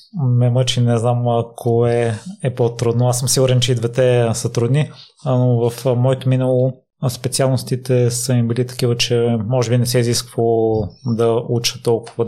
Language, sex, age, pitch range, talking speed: Bulgarian, male, 20-39, 115-125 Hz, 165 wpm